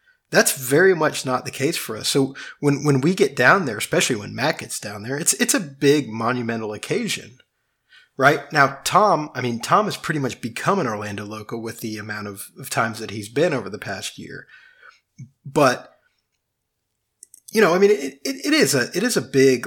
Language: English